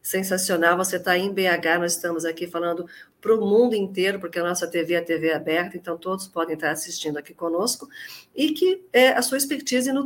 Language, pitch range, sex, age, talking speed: Portuguese, 175-220 Hz, female, 50-69, 210 wpm